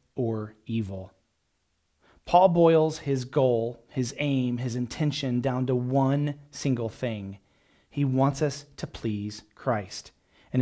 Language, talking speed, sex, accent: English, 125 wpm, male, American